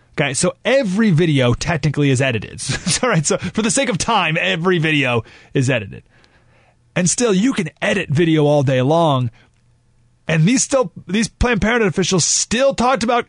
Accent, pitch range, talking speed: American, 120-165 Hz, 165 wpm